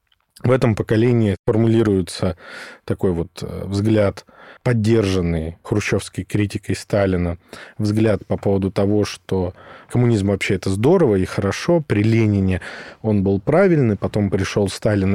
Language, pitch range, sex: Russian, 95-115 Hz, male